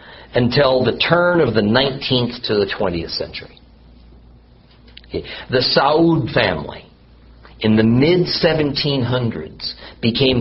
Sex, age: male, 50-69